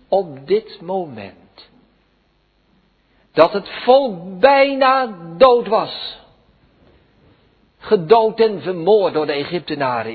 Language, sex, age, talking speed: Dutch, male, 60-79, 90 wpm